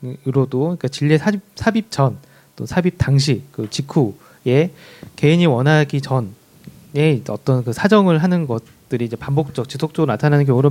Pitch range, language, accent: 130-160 Hz, Korean, native